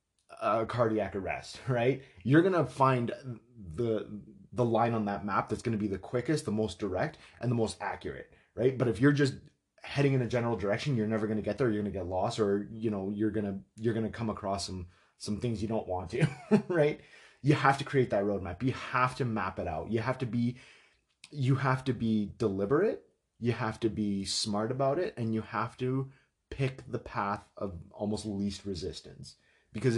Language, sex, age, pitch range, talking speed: English, male, 30-49, 100-120 Hz, 200 wpm